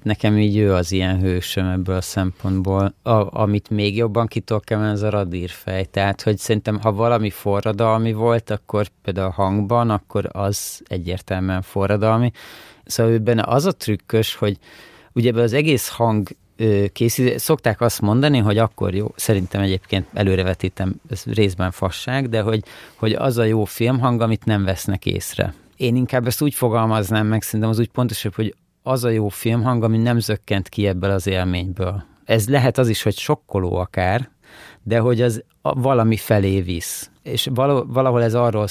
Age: 30-49